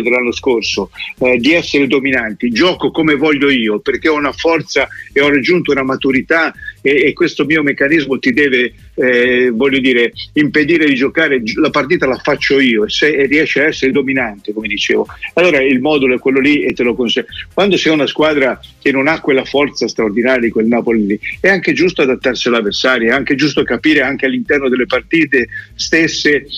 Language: Italian